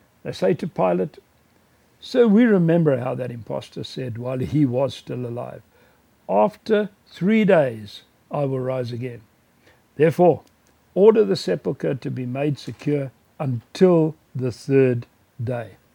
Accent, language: South African, English